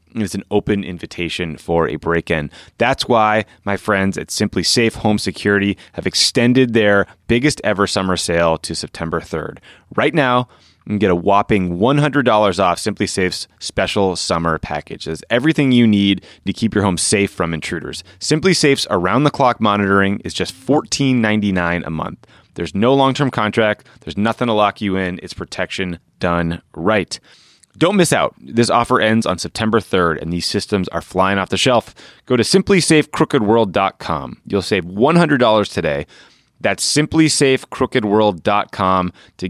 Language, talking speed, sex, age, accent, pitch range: English, 160 wpm, male, 30-49, American, 90-115 Hz